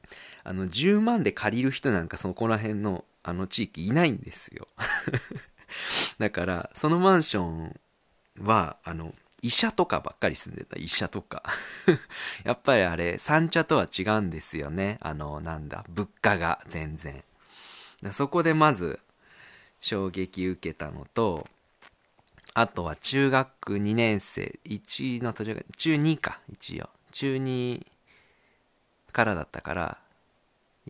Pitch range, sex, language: 90-140 Hz, male, Japanese